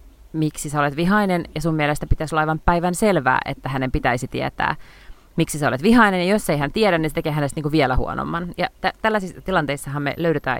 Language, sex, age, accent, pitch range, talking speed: Finnish, female, 30-49, native, 145-190 Hz, 220 wpm